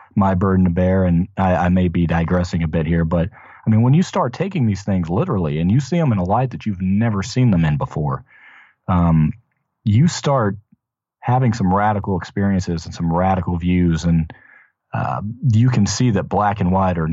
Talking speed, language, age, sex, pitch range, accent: 205 wpm, English, 40-59, male, 85-105 Hz, American